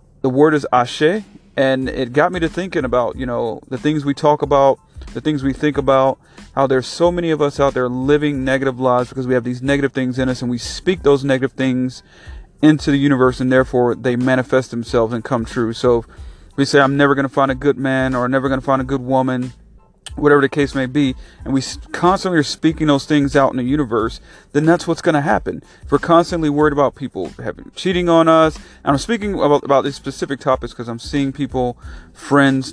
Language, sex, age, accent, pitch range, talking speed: English, male, 30-49, American, 125-150 Hz, 225 wpm